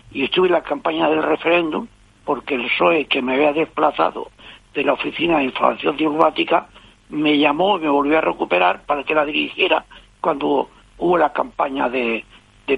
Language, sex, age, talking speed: Spanish, male, 60-79, 175 wpm